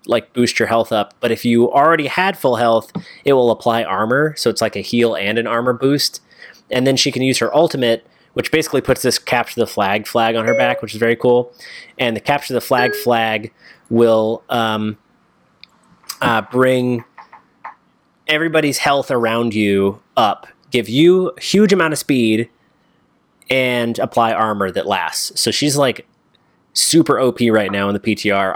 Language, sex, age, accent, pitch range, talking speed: English, male, 20-39, American, 110-135 Hz, 175 wpm